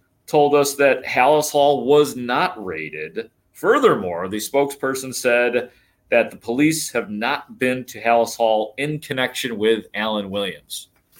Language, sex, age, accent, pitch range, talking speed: English, male, 40-59, American, 105-140 Hz, 140 wpm